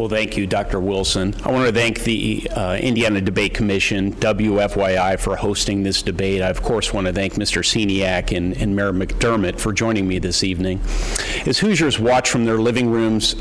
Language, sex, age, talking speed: English, male, 50-69, 190 wpm